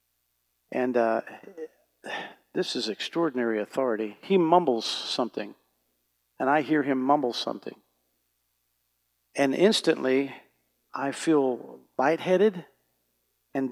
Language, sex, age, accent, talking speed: English, male, 50-69, American, 90 wpm